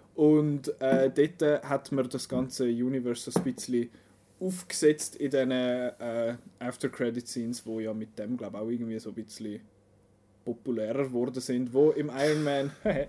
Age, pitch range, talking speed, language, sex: 20-39, 120-140 Hz, 155 wpm, German, male